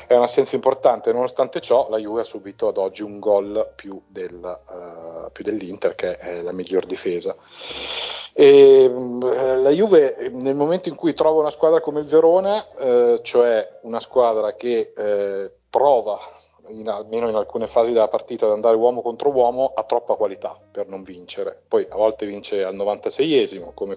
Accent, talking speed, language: native, 175 wpm, Italian